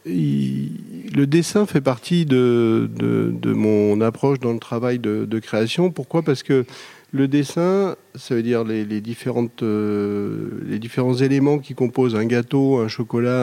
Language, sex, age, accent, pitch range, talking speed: French, male, 40-59, French, 115-140 Hz, 165 wpm